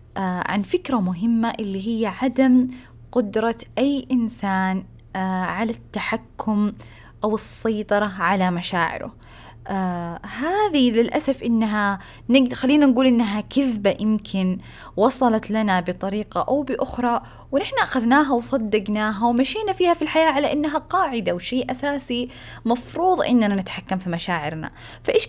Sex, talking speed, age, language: female, 110 wpm, 20-39, Arabic